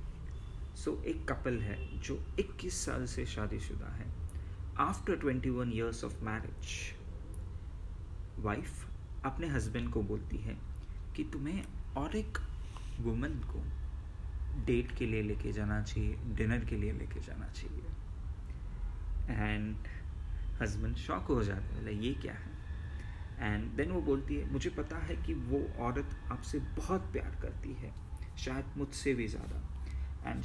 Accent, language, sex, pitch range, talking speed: native, Hindi, male, 80-105 Hz, 140 wpm